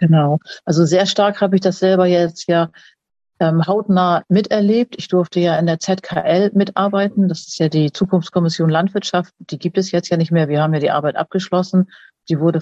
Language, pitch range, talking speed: German, 160-185 Hz, 195 wpm